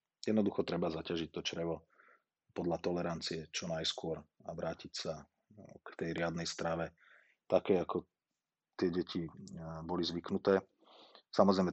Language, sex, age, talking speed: Slovak, male, 30-49, 120 wpm